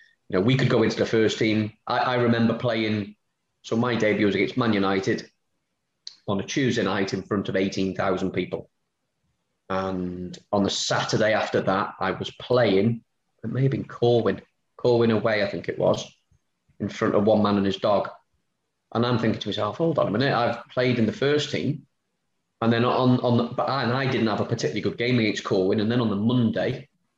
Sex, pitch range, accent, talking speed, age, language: male, 95-120 Hz, British, 210 wpm, 20-39, English